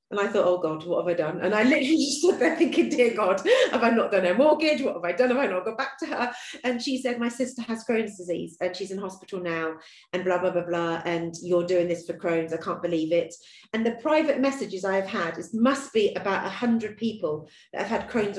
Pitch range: 180-240 Hz